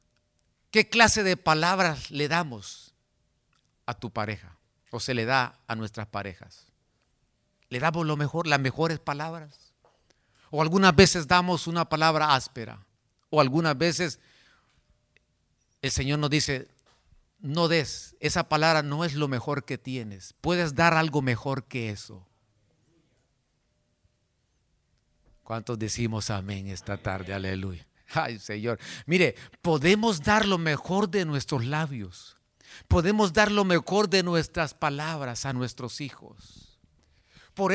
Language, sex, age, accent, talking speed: Spanish, male, 50-69, Mexican, 125 wpm